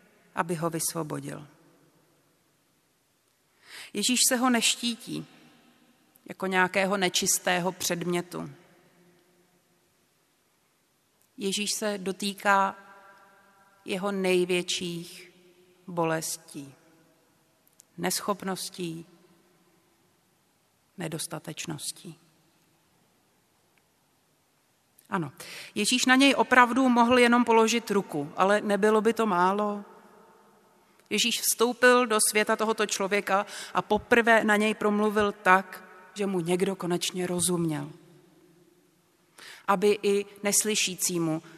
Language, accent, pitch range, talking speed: Czech, native, 170-205 Hz, 75 wpm